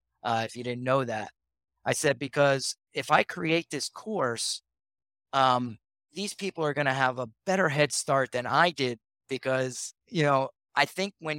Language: English